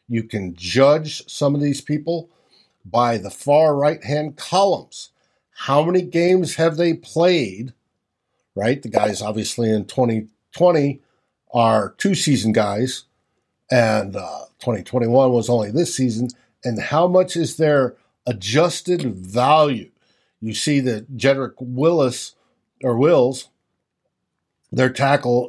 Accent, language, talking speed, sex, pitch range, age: American, English, 120 wpm, male, 120-150 Hz, 50-69